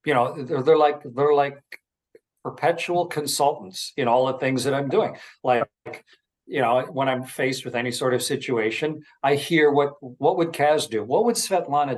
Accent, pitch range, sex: American, 115-145 Hz, male